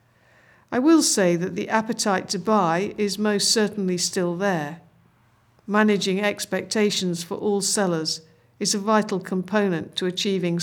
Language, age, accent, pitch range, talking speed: English, 50-69, British, 170-205 Hz, 135 wpm